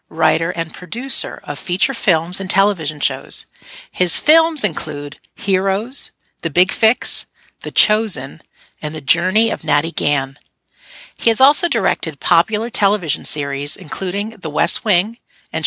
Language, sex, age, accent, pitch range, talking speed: English, female, 50-69, American, 165-235 Hz, 140 wpm